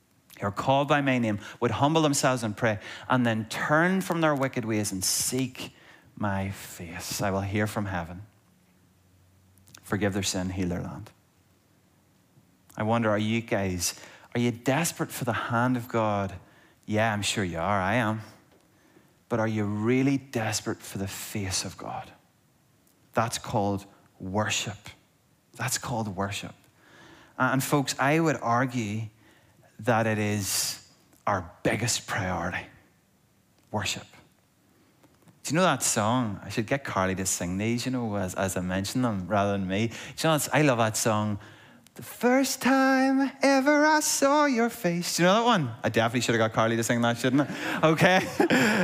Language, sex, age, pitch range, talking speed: English, male, 30-49, 100-140 Hz, 165 wpm